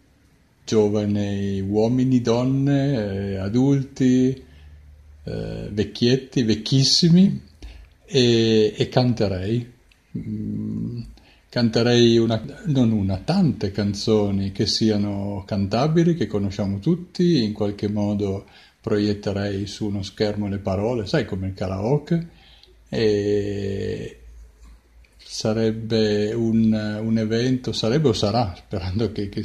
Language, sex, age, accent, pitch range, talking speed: Italian, male, 50-69, native, 105-120 Hz, 90 wpm